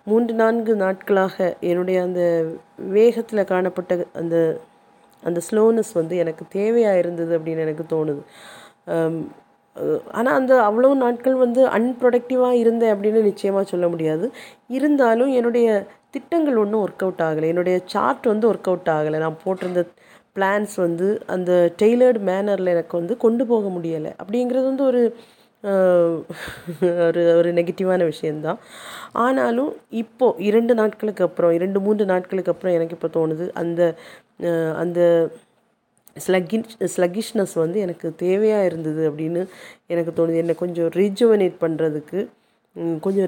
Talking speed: 120 wpm